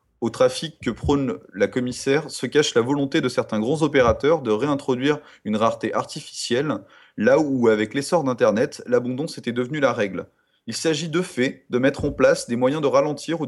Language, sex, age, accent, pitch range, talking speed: French, male, 30-49, French, 125-150 Hz, 185 wpm